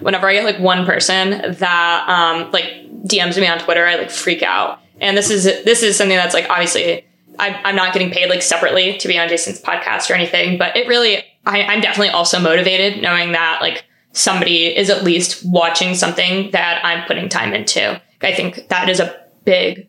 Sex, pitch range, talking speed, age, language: female, 175-200 Hz, 200 wpm, 20-39, English